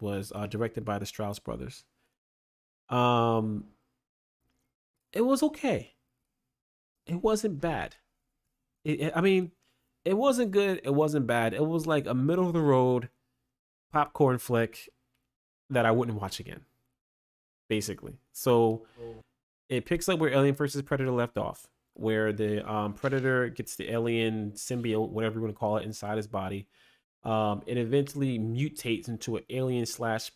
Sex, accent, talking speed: male, American, 140 wpm